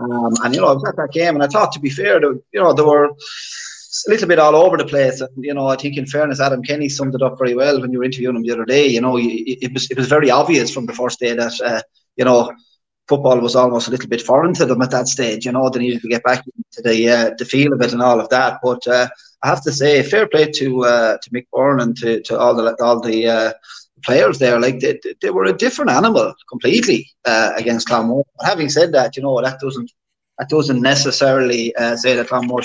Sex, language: male, English